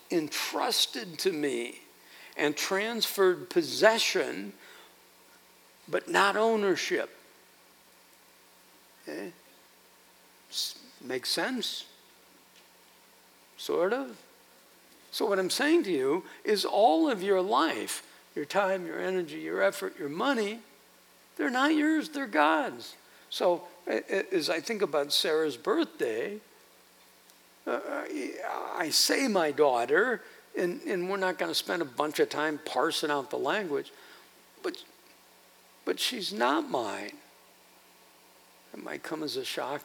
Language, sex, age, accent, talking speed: English, male, 60-79, American, 110 wpm